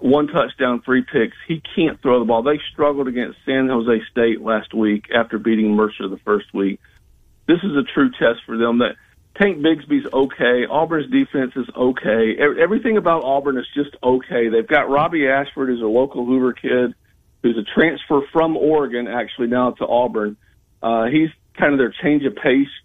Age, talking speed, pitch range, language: 50-69, 185 wpm, 110-145 Hz, English